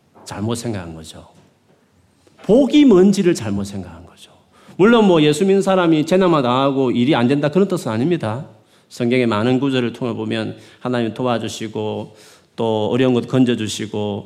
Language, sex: Korean, male